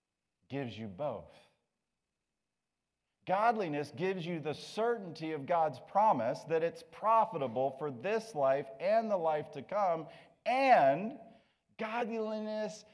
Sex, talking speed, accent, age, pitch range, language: male, 110 wpm, American, 40-59, 165-230 Hz, English